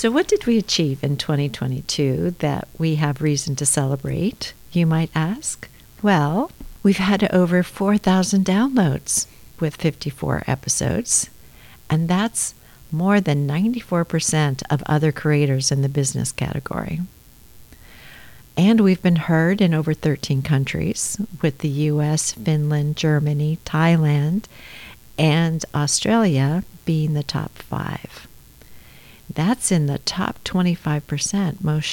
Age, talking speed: 50-69, 120 wpm